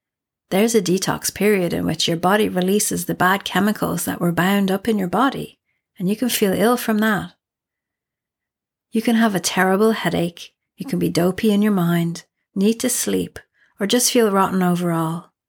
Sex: female